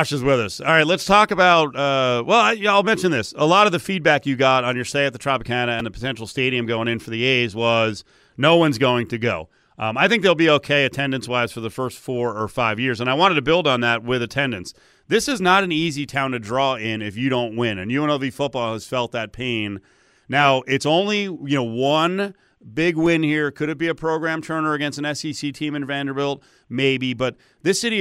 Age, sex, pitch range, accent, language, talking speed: 40-59, male, 120-160 Hz, American, English, 240 wpm